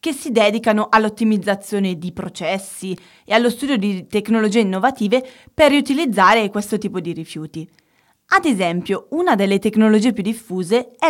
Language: Italian